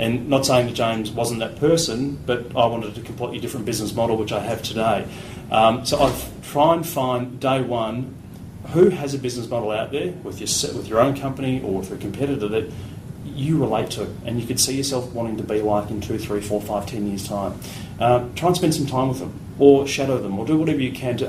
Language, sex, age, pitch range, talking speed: English, male, 30-49, 105-130 Hz, 235 wpm